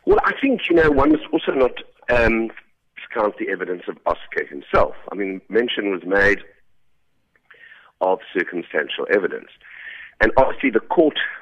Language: English